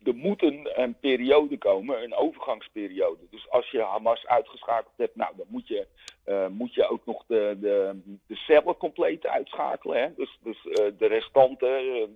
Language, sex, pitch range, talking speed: Dutch, male, 100-155 Hz, 150 wpm